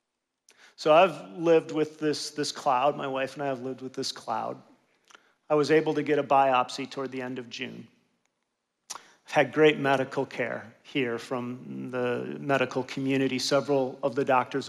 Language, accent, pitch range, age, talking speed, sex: English, American, 130-155 Hz, 40-59, 170 wpm, male